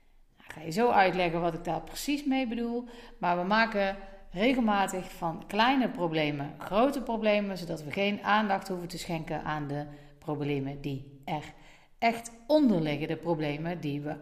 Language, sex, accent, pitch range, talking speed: Dutch, female, Dutch, 170-240 Hz, 165 wpm